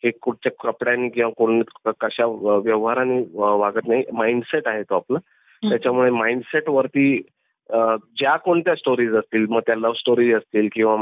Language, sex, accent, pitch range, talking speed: Marathi, male, native, 110-125 Hz, 130 wpm